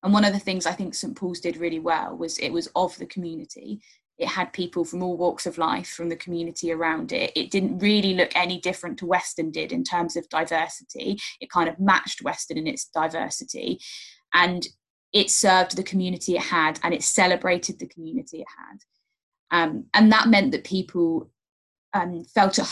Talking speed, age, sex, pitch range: 200 wpm, 20-39, female, 170-210 Hz